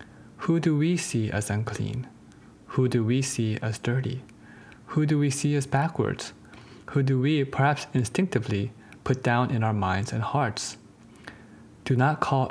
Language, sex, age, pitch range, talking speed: English, male, 20-39, 110-130 Hz, 160 wpm